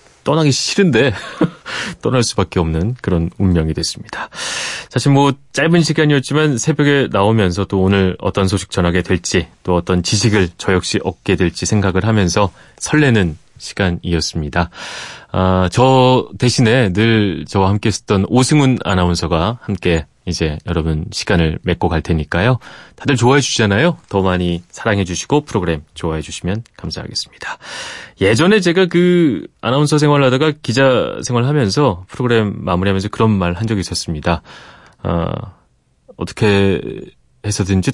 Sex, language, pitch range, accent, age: male, Korean, 90-130 Hz, native, 30-49